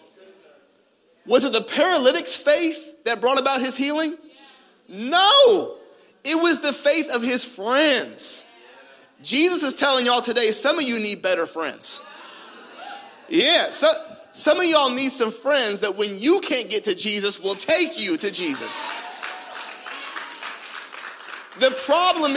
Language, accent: English, American